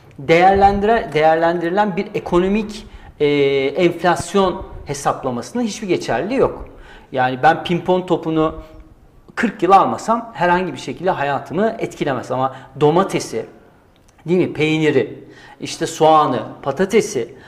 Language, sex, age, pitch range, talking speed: English, male, 40-59, 150-210 Hz, 100 wpm